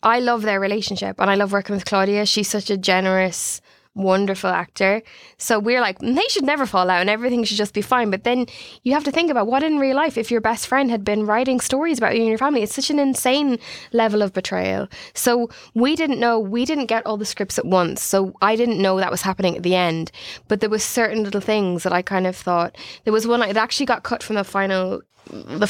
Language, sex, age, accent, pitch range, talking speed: English, female, 20-39, Irish, 185-235 Hz, 245 wpm